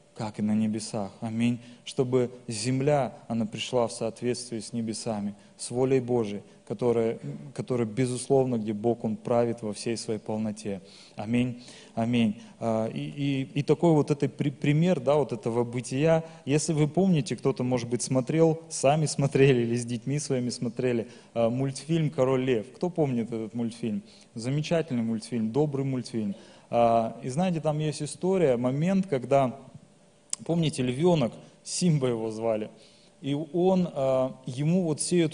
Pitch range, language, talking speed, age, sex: 120-160 Hz, Russian, 145 wpm, 20-39, male